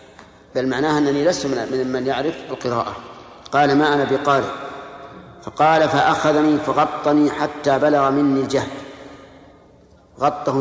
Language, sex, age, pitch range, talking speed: Arabic, male, 50-69, 130-150 Hz, 115 wpm